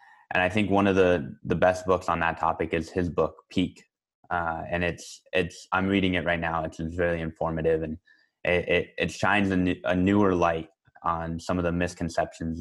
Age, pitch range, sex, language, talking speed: 20-39, 80-90 Hz, male, English, 205 wpm